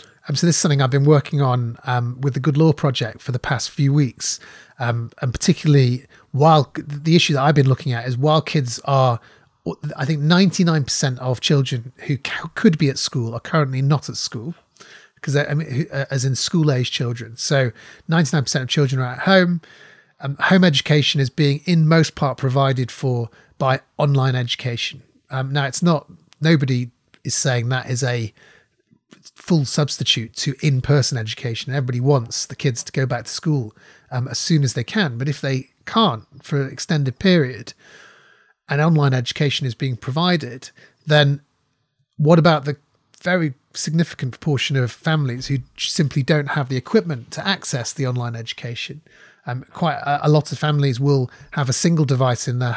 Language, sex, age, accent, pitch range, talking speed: English, male, 30-49, British, 130-155 Hz, 180 wpm